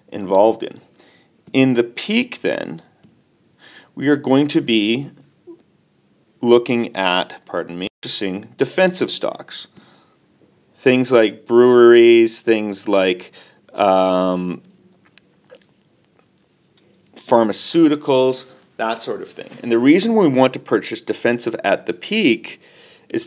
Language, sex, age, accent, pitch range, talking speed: English, male, 30-49, American, 100-140 Hz, 105 wpm